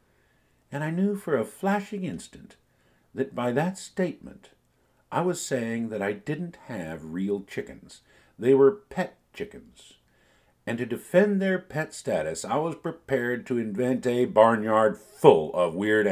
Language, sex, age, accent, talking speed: English, male, 50-69, American, 150 wpm